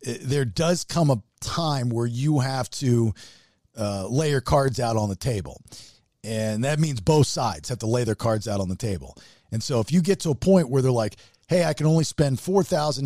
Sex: male